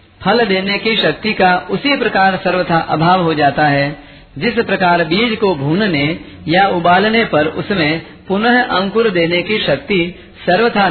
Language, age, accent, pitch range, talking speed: Hindi, 50-69, native, 150-210 Hz, 150 wpm